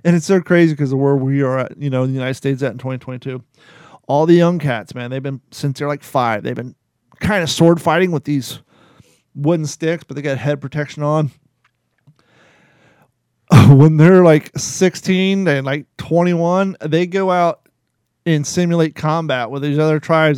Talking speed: 185 wpm